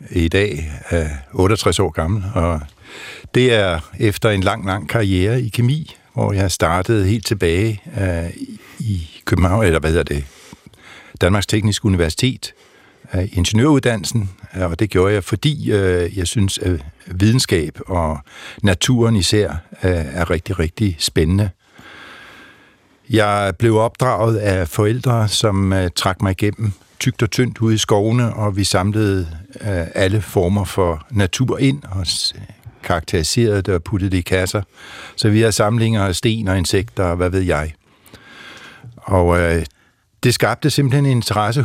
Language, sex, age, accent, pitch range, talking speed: Danish, male, 60-79, native, 90-115 Hz, 140 wpm